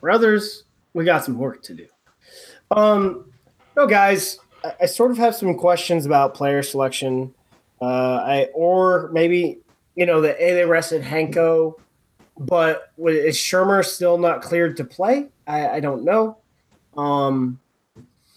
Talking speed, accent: 145 wpm, American